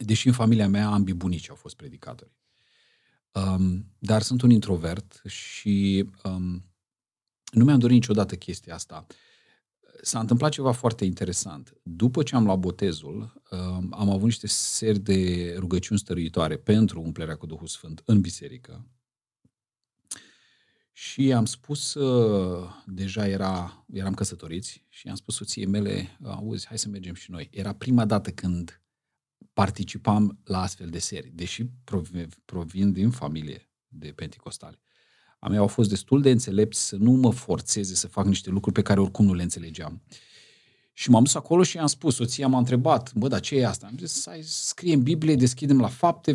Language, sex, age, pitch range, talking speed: Romanian, male, 40-59, 95-125 Hz, 155 wpm